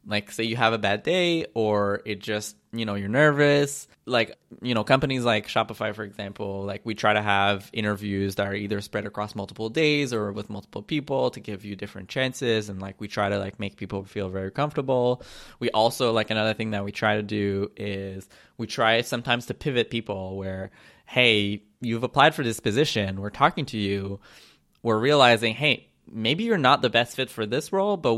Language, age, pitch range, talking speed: English, 20-39, 105-130 Hz, 205 wpm